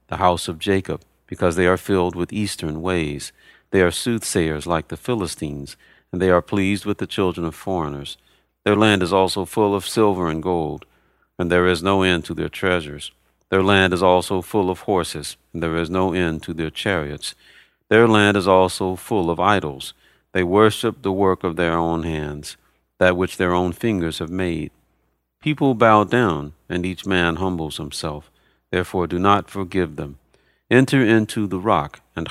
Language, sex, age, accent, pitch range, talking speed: English, male, 50-69, American, 80-95 Hz, 180 wpm